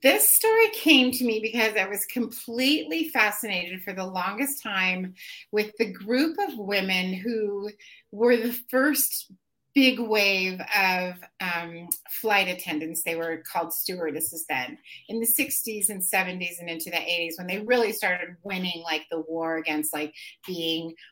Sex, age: female, 30-49